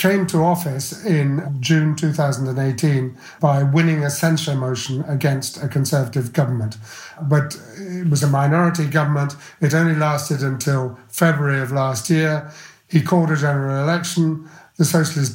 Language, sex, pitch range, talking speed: English, male, 135-155 Hz, 140 wpm